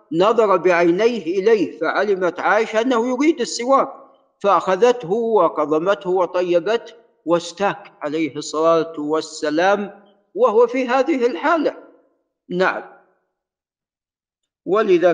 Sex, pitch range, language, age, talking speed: male, 160-210 Hz, Arabic, 50-69, 85 wpm